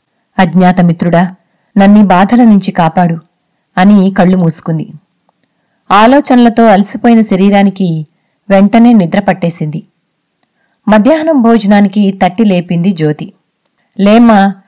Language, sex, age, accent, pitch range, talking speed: Telugu, female, 30-49, native, 180-225 Hz, 80 wpm